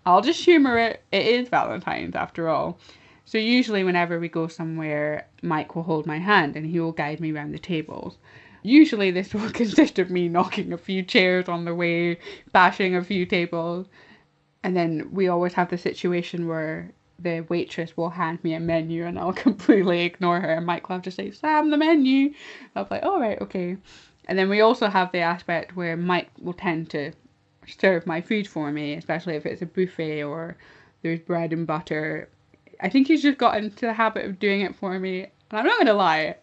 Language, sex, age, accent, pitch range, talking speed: English, female, 10-29, British, 170-220 Hz, 205 wpm